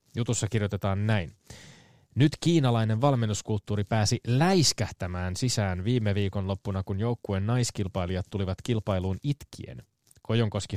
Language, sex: Finnish, male